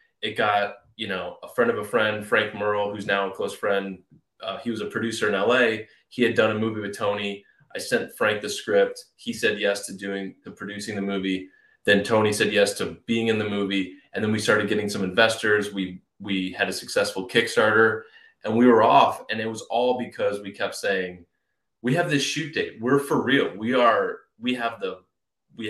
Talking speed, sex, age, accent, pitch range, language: 215 wpm, male, 20-39, American, 95-120 Hz, English